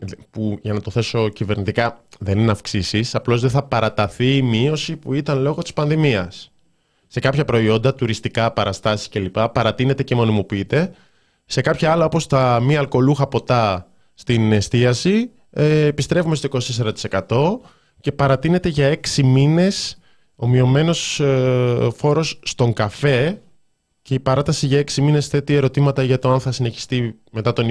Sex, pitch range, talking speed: male, 105-145 Hz, 150 wpm